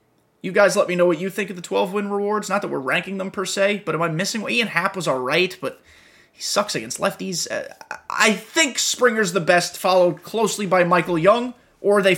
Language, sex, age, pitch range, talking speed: English, male, 30-49, 180-245 Hz, 230 wpm